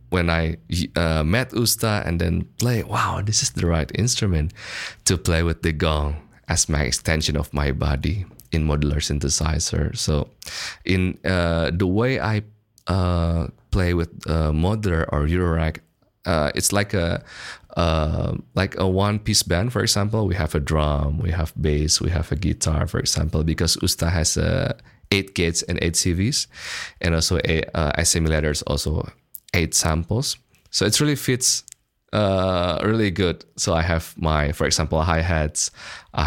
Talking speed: 160 wpm